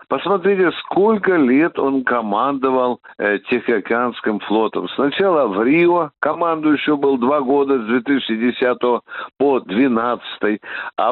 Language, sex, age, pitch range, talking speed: Russian, male, 60-79, 125-185 Hz, 110 wpm